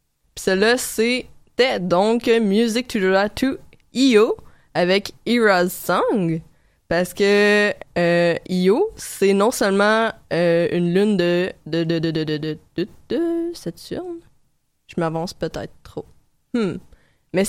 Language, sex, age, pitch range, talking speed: French, female, 20-39, 175-230 Hz, 90 wpm